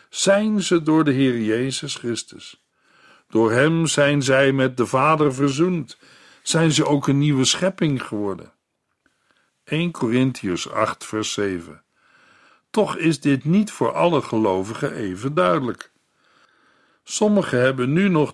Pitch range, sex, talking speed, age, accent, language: 125-165 Hz, male, 130 wpm, 60-79, Dutch, Dutch